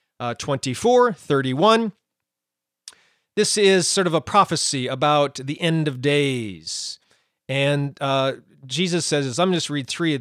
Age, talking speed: 40-59, 135 wpm